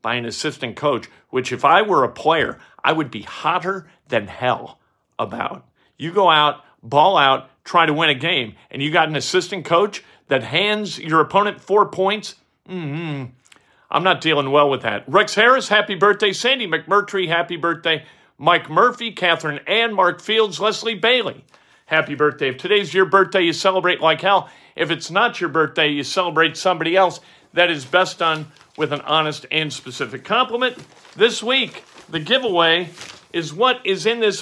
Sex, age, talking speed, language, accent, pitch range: male, 50-69, 175 wpm, English, American, 155-200 Hz